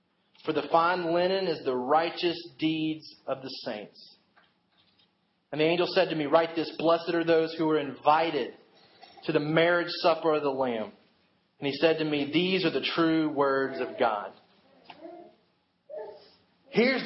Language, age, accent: English, 30-49, American